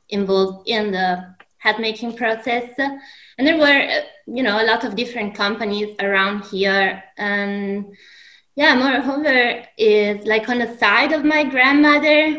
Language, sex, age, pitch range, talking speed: English, female, 20-39, 185-235 Hz, 140 wpm